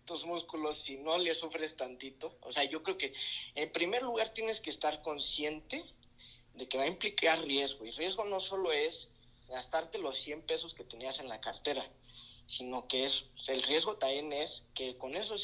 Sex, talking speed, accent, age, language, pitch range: male, 195 wpm, Mexican, 40-59, Spanish, 130-165 Hz